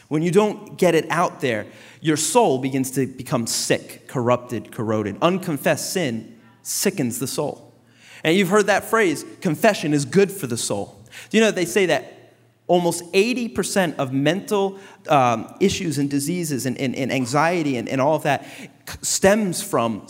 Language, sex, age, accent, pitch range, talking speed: English, male, 30-49, American, 125-175 Hz, 165 wpm